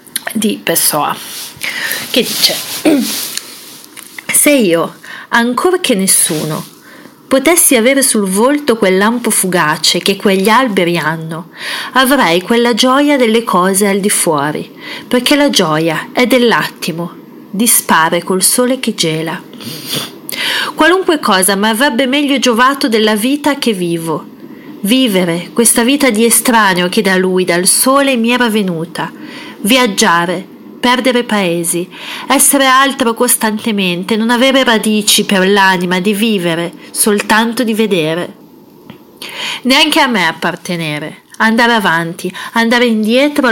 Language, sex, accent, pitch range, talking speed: Italian, female, native, 185-250 Hz, 115 wpm